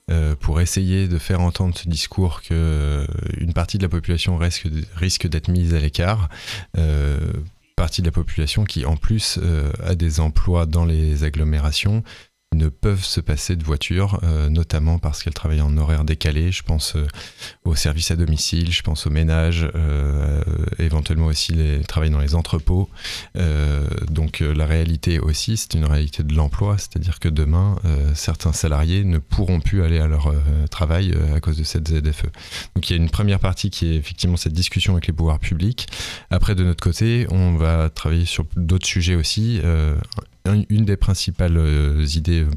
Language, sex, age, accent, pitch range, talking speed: French, male, 20-39, French, 75-90 Hz, 180 wpm